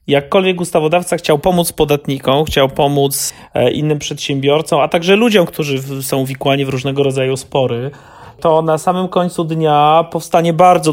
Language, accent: Polish, native